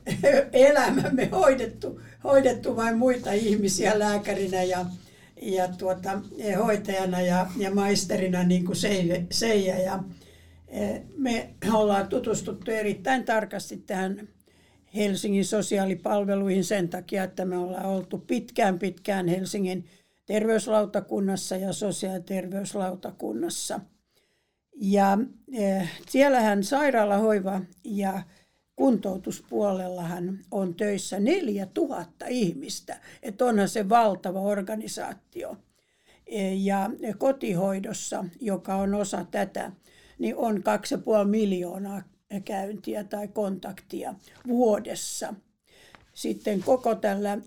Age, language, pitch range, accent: 60-79, Finnish, 190-220 Hz, native